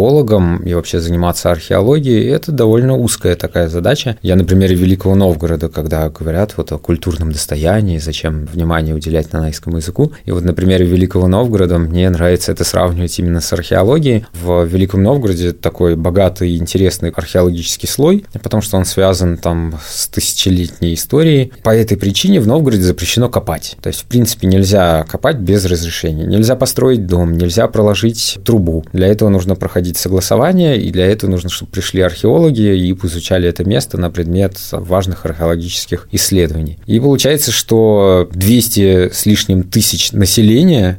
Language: Russian